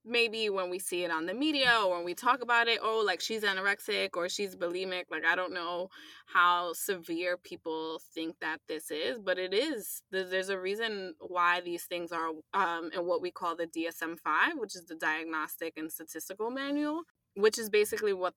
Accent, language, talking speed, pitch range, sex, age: American, English, 195 wpm, 170-210 Hz, female, 20-39